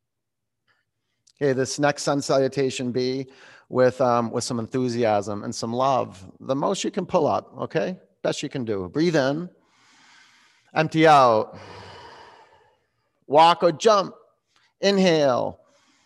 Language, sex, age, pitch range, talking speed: English, male, 30-49, 125-175 Hz, 125 wpm